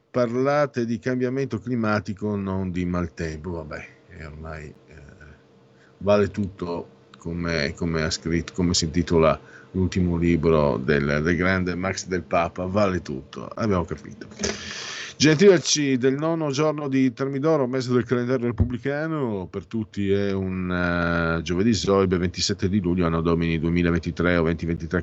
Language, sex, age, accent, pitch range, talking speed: Italian, male, 50-69, native, 85-120 Hz, 125 wpm